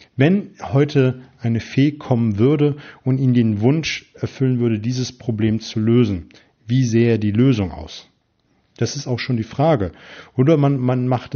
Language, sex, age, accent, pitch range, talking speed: German, male, 40-59, German, 110-135 Hz, 165 wpm